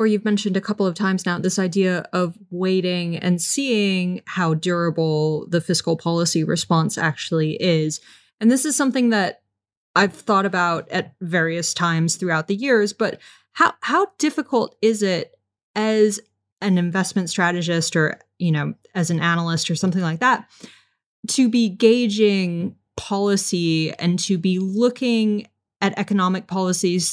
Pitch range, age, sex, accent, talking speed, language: 170-200 Hz, 20-39, female, American, 150 wpm, English